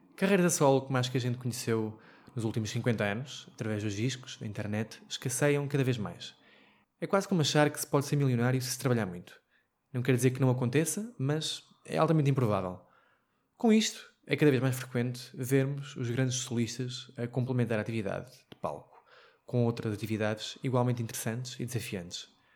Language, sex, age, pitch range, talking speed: Portuguese, male, 20-39, 115-135 Hz, 185 wpm